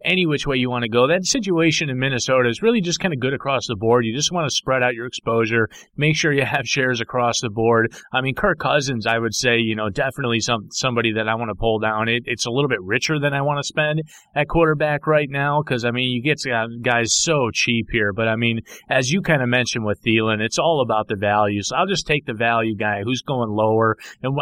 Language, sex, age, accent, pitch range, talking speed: English, male, 30-49, American, 125-165 Hz, 255 wpm